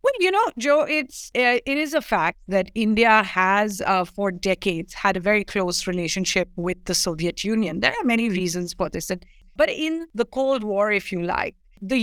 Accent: Indian